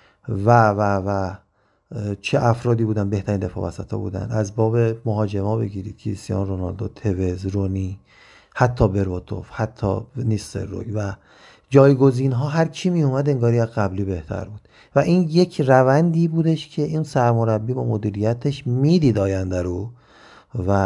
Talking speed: 140 wpm